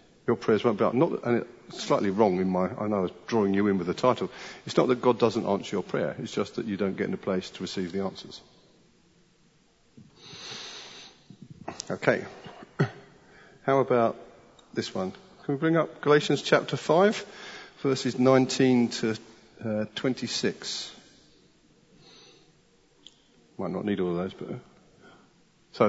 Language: English